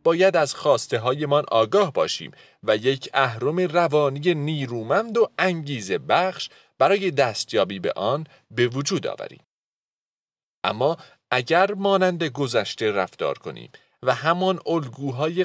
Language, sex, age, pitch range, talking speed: Persian, male, 40-59, 130-190 Hz, 115 wpm